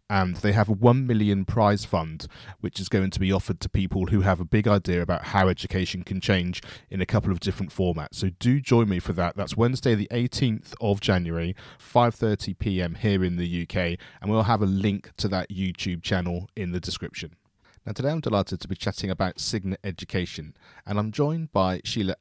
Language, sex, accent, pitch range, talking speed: English, male, British, 90-110 Hz, 210 wpm